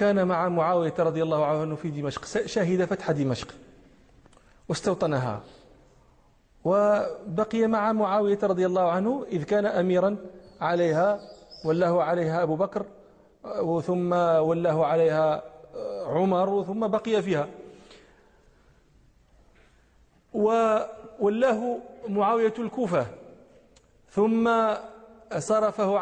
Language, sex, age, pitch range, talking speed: Arabic, male, 40-59, 180-210 Hz, 90 wpm